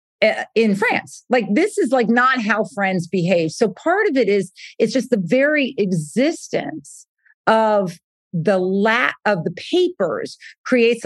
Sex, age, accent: female, 40-59, American